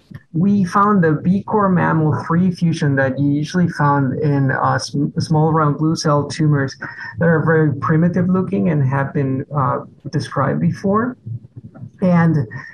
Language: English